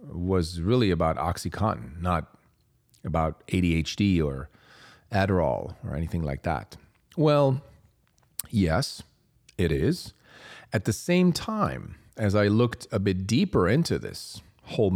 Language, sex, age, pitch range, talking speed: English, male, 40-59, 90-130 Hz, 120 wpm